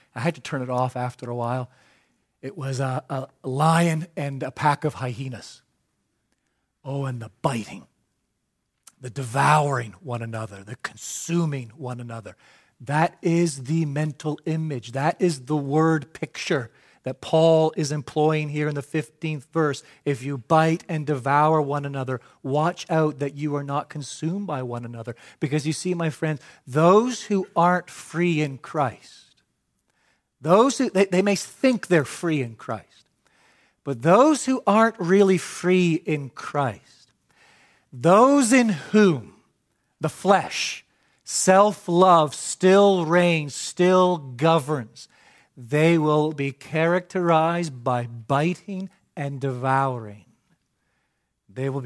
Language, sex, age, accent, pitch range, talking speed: English, male, 40-59, American, 135-170 Hz, 135 wpm